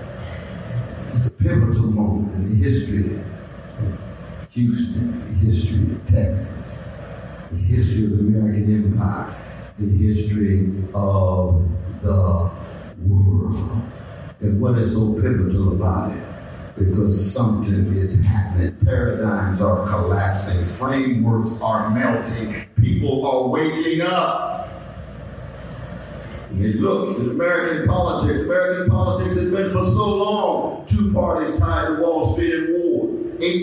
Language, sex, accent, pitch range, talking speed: English, male, American, 100-125 Hz, 120 wpm